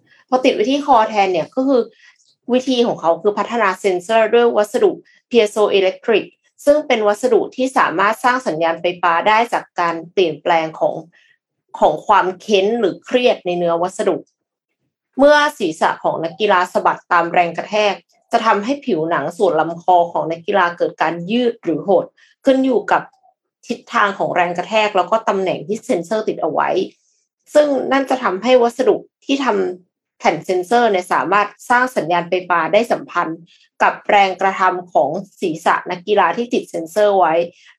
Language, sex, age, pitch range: Thai, female, 20-39, 180-245 Hz